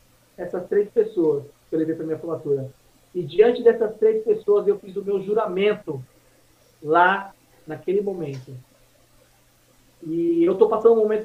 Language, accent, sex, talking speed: Portuguese, Brazilian, male, 155 wpm